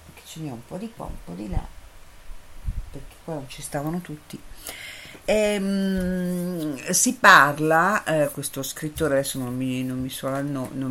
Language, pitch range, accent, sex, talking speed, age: Italian, 130-175 Hz, native, female, 180 wpm, 50-69